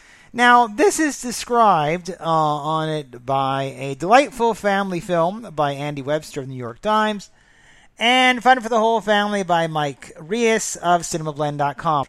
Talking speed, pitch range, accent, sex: 155 wpm, 160-220 Hz, American, male